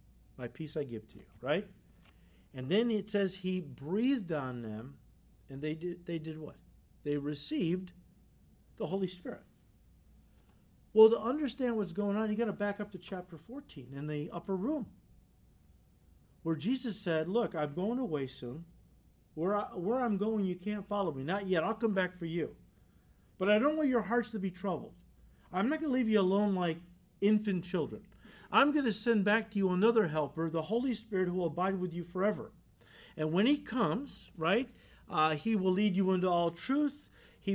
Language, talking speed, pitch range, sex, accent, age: English, 185 wpm, 160-215 Hz, male, American, 50-69